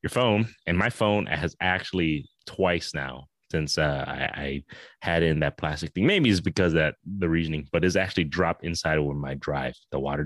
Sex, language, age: male, English, 30-49